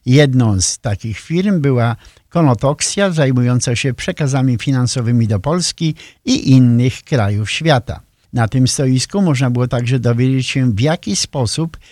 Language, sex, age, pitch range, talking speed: Polish, male, 50-69, 120-145 Hz, 135 wpm